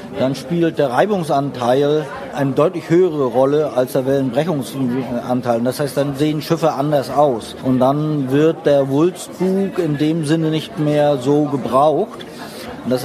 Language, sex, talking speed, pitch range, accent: German, male, 145 wpm, 135-155 Hz, German